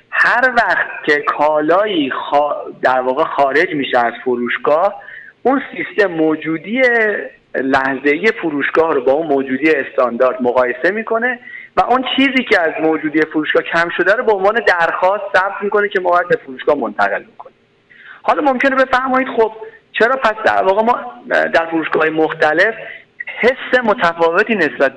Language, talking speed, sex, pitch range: Persian, 140 wpm, male, 135-215 Hz